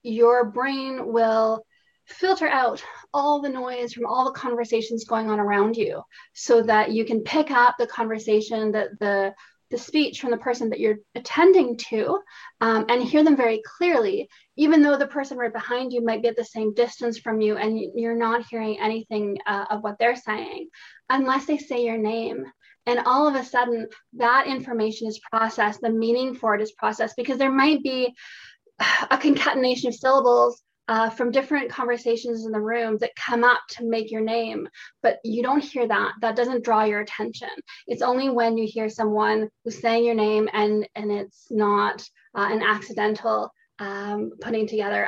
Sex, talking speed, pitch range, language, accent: female, 185 wpm, 220-255 Hz, English, American